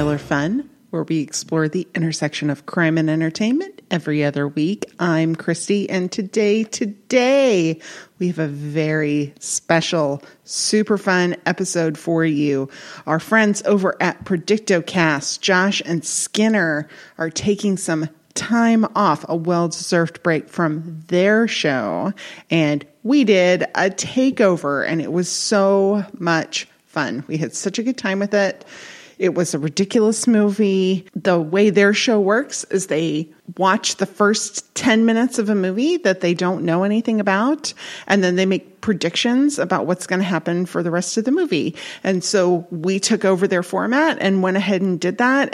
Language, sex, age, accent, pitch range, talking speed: English, female, 30-49, American, 165-210 Hz, 160 wpm